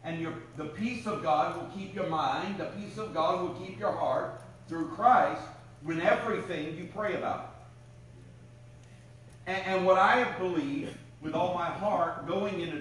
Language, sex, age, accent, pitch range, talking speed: English, male, 50-69, American, 125-175 Hz, 165 wpm